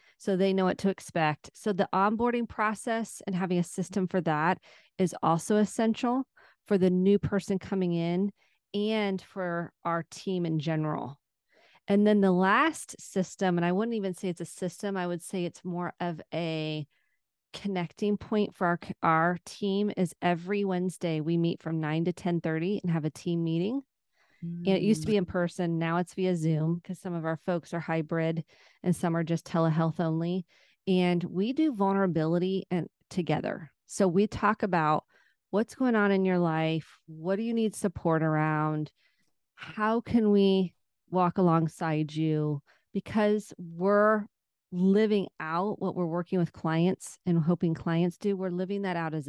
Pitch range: 165-200 Hz